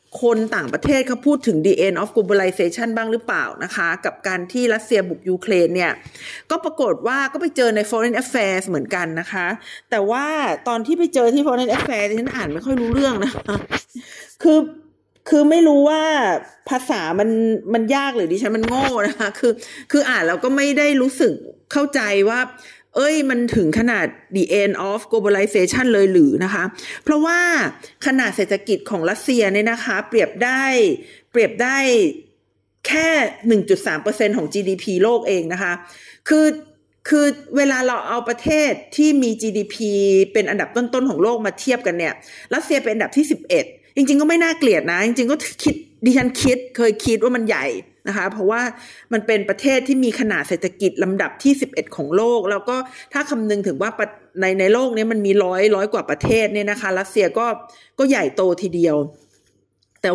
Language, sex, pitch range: Thai, female, 200-275 Hz